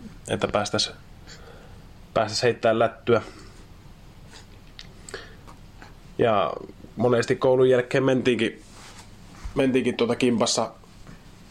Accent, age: native, 20-39